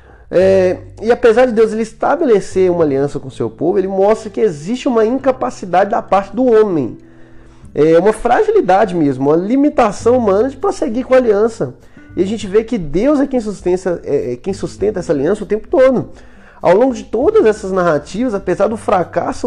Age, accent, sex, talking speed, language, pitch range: 20-39, Brazilian, male, 175 wpm, Portuguese, 175-245 Hz